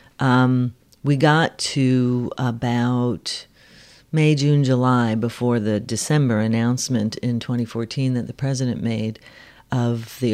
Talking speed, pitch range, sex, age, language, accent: 115 wpm, 120-145 Hz, female, 40-59, English, American